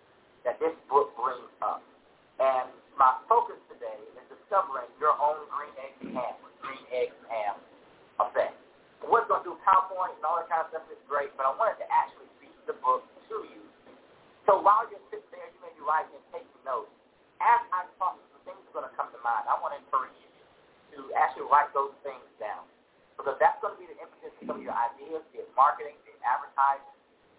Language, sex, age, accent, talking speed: English, male, 40-59, American, 215 wpm